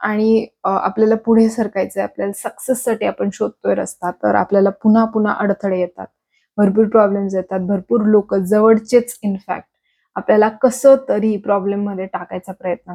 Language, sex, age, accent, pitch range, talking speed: English, female, 20-39, Indian, 190-220 Hz, 140 wpm